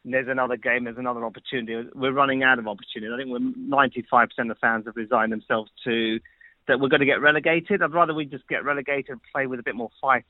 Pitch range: 125-170 Hz